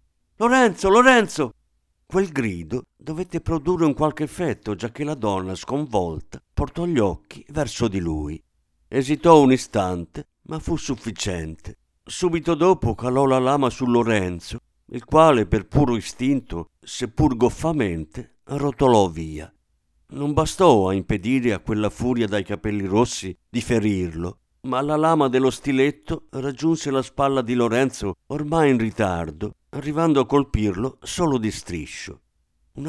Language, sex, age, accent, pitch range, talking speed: Italian, male, 50-69, native, 95-140 Hz, 135 wpm